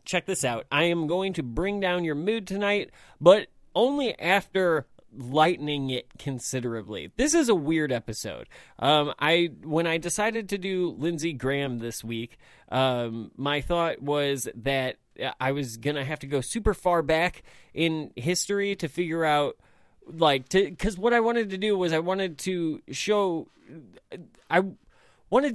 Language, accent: English, American